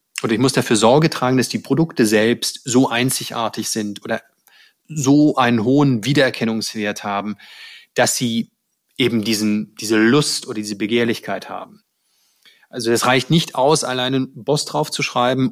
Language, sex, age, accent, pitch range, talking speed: German, male, 30-49, German, 110-145 Hz, 155 wpm